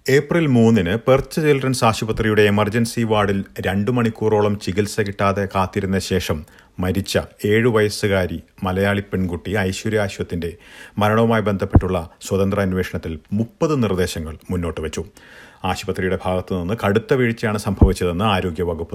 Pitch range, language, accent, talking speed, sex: 90-110 Hz, Malayalam, native, 95 wpm, male